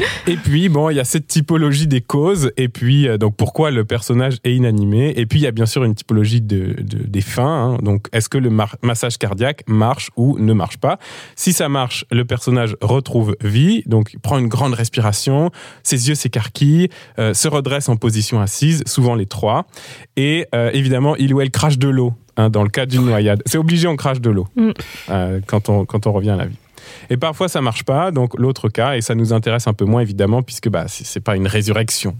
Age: 20-39